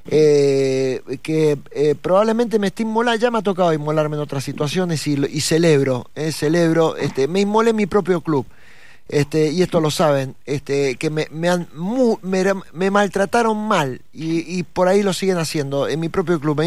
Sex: male